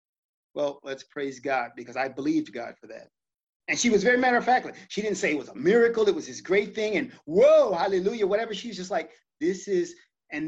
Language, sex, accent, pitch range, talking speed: English, male, American, 145-230 Hz, 225 wpm